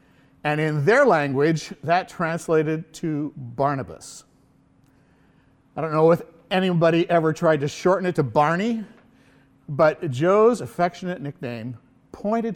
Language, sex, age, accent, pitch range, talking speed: English, male, 50-69, American, 135-185 Hz, 120 wpm